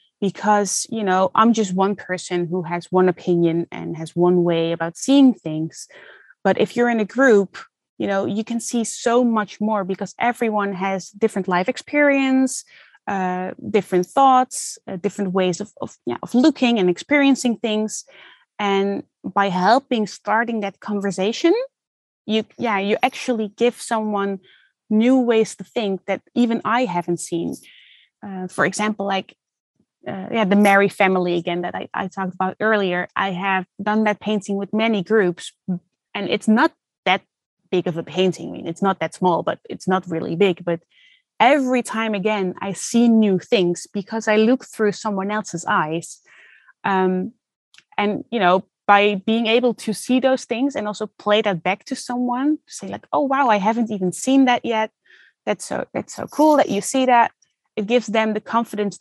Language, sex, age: English, female, 20-39